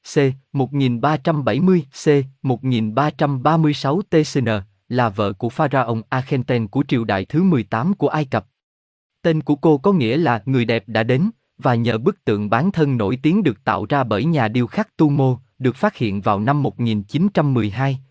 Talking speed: 165 wpm